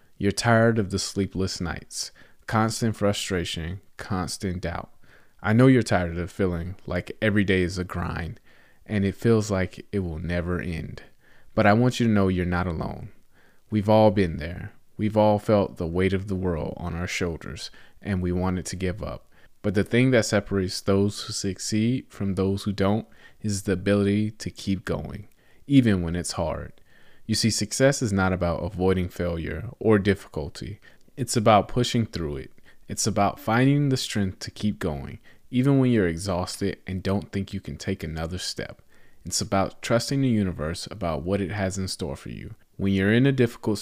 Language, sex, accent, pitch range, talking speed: English, male, American, 90-110 Hz, 185 wpm